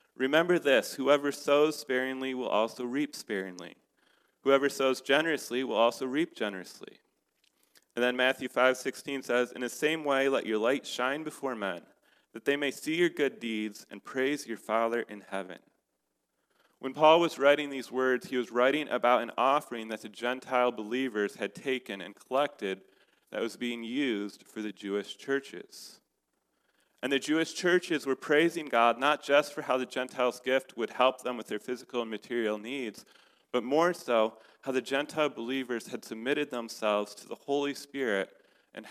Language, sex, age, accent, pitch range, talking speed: English, male, 30-49, American, 115-140 Hz, 170 wpm